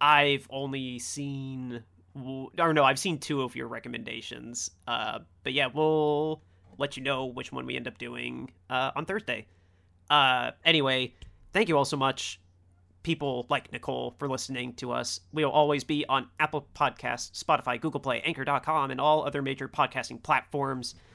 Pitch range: 90-140 Hz